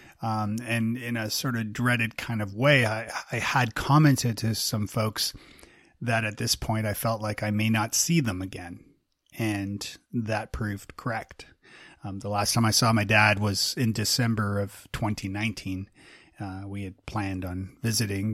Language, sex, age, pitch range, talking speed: English, male, 30-49, 100-125 Hz, 175 wpm